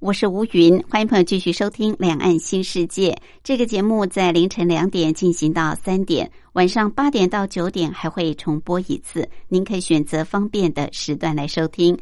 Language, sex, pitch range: Japanese, male, 160-200 Hz